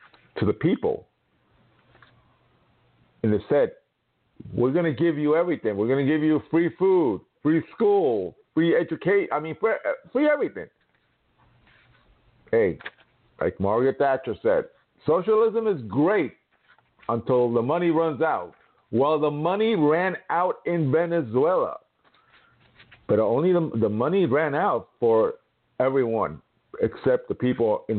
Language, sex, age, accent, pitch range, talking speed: English, male, 50-69, American, 135-225 Hz, 130 wpm